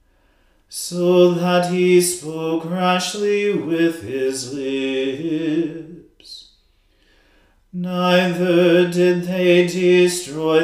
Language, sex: English, male